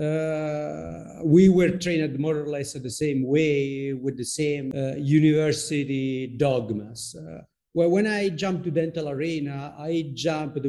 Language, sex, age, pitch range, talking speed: English, male, 50-69, 135-165 Hz, 145 wpm